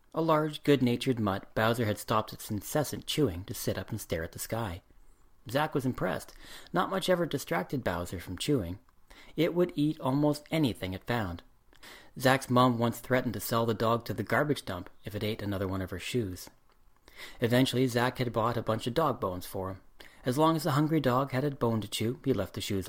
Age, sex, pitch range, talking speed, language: 40-59, male, 105-130 Hz, 210 wpm, English